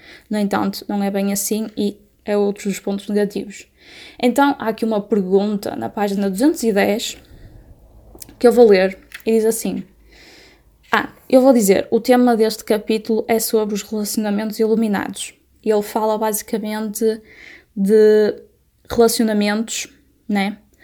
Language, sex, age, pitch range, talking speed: Portuguese, female, 10-29, 205-225 Hz, 130 wpm